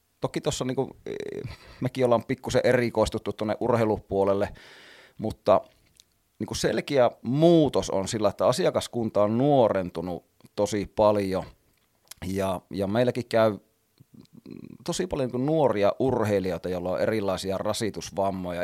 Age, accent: 30-49, native